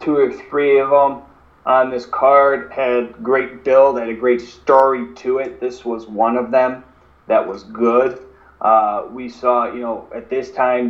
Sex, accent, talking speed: male, American, 180 wpm